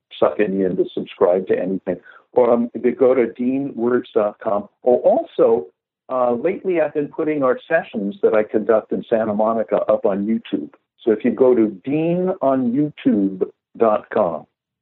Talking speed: 155 wpm